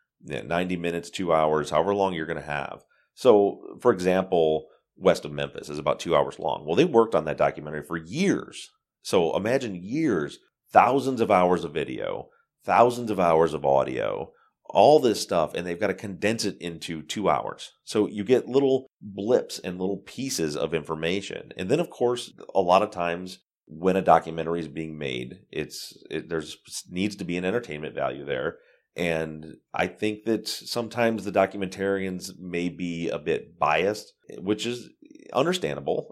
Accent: American